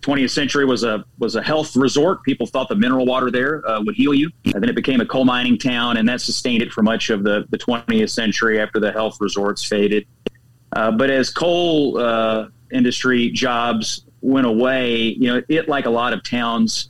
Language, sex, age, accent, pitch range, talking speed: English, male, 30-49, American, 115-135 Hz, 210 wpm